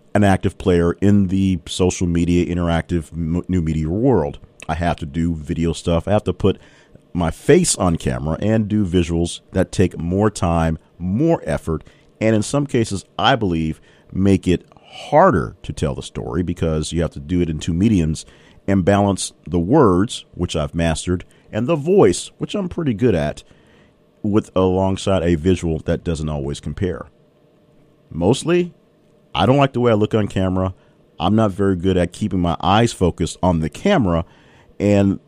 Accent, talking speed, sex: American, 175 wpm, male